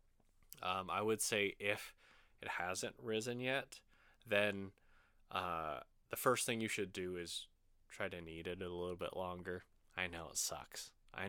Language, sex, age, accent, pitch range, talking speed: English, male, 20-39, American, 90-110 Hz, 165 wpm